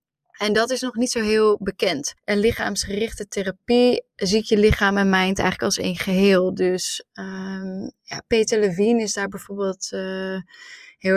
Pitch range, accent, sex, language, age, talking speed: 195-225 Hz, Dutch, female, Dutch, 20-39, 150 wpm